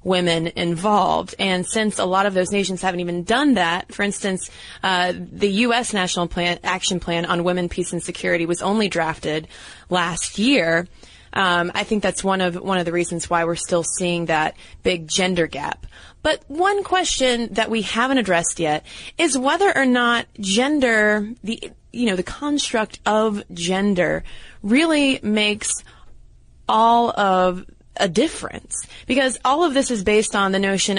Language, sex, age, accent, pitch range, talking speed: English, female, 20-39, American, 175-225 Hz, 165 wpm